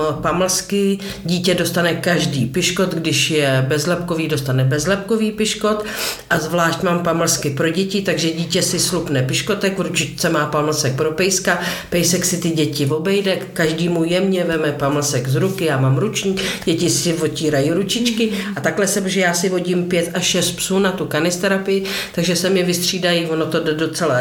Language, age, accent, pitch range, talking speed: Czech, 50-69, native, 155-185 Hz, 165 wpm